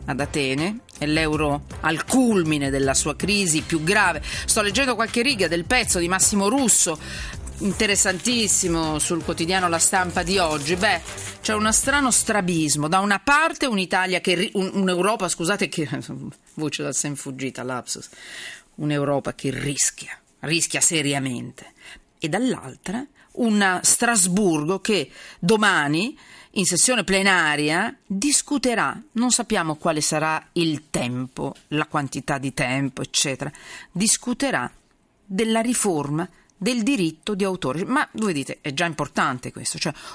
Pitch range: 155-225 Hz